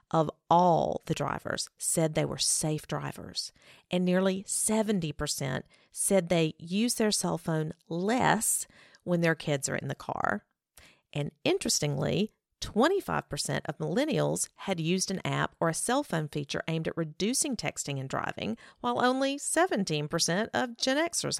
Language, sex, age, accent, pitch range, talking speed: English, female, 40-59, American, 155-215 Hz, 145 wpm